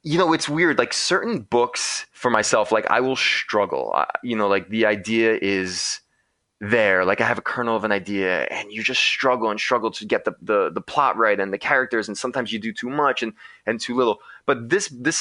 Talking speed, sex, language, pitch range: 230 wpm, male, English, 105-130 Hz